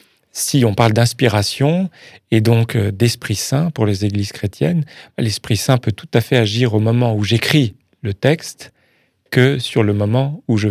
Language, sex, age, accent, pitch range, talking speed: French, male, 40-59, French, 110-135 Hz, 175 wpm